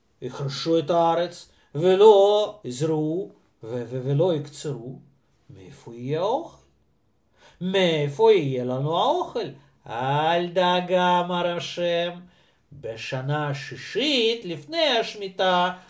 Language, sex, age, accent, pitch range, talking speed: Russian, male, 50-69, native, 145-230 Hz, 60 wpm